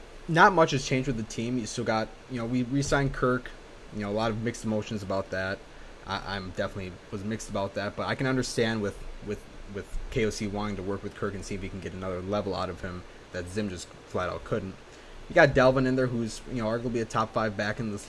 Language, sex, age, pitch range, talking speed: English, male, 20-39, 100-120 Hz, 250 wpm